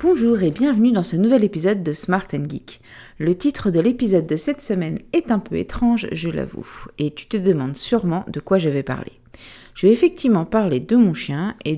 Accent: French